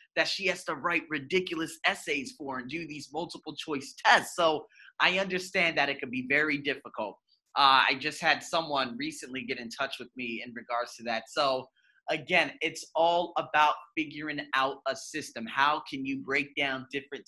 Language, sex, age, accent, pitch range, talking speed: English, male, 30-49, American, 140-195 Hz, 185 wpm